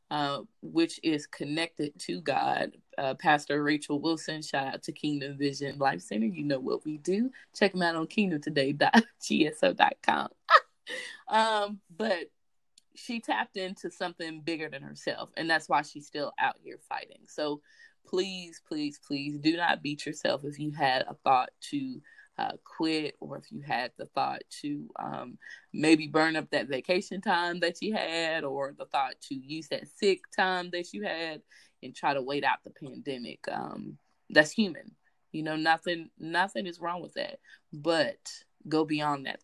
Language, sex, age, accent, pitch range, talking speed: English, female, 20-39, American, 145-185 Hz, 165 wpm